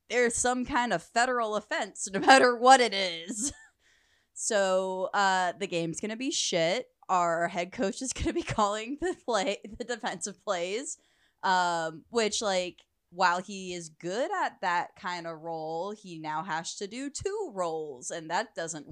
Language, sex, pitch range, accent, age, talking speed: English, female, 185-245 Hz, American, 20-39, 170 wpm